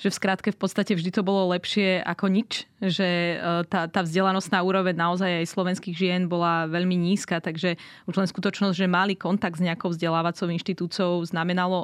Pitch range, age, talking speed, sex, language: 175-205 Hz, 20-39, 180 wpm, female, Slovak